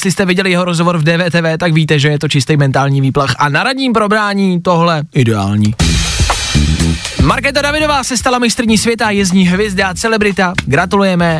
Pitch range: 145-210 Hz